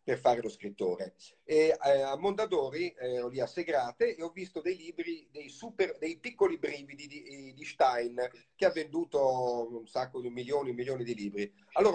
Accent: native